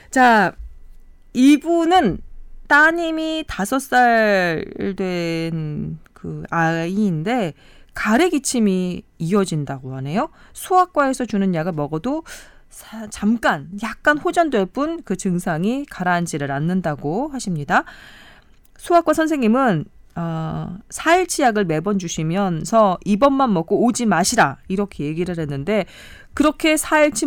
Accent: native